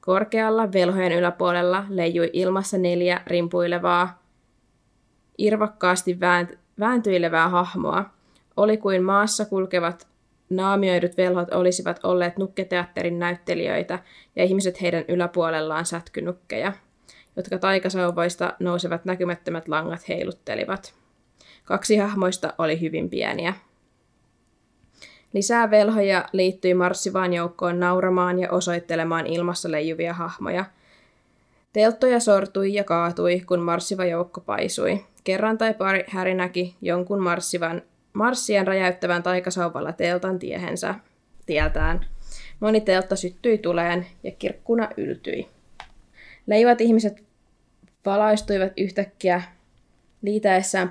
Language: Finnish